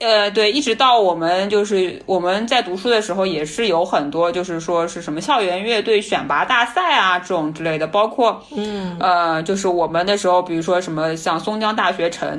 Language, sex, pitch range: Chinese, female, 165-210 Hz